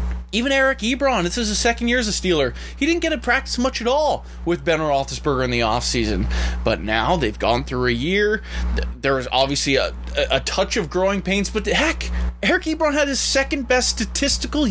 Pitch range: 140-230 Hz